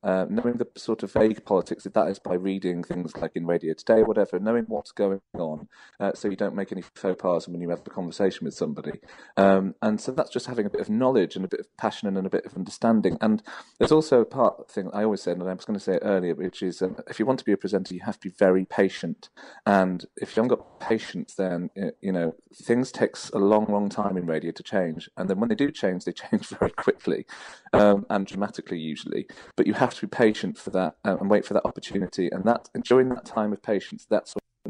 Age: 40-59